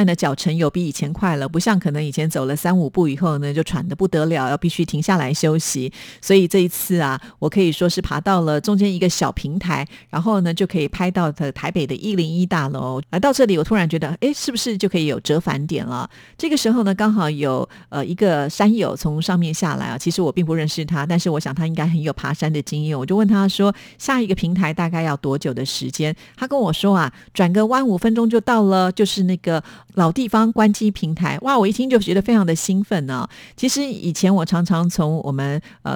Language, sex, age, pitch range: Chinese, female, 50-69, 155-195 Hz